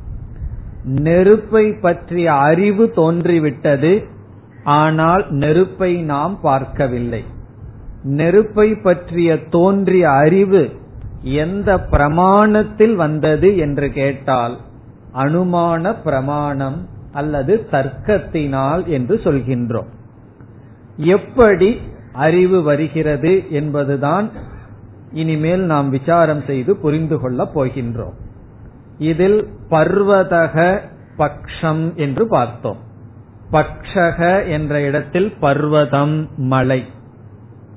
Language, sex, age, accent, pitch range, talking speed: Tamil, male, 50-69, native, 120-170 Hz, 70 wpm